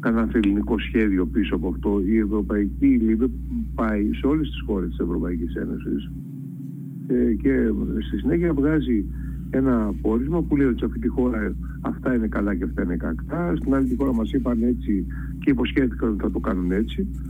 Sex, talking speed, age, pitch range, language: male, 180 wpm, 50-69, 105-150 Hz, Greek